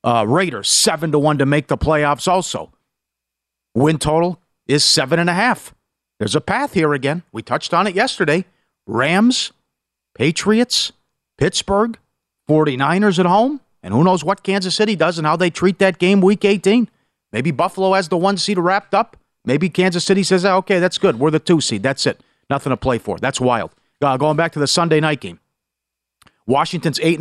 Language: English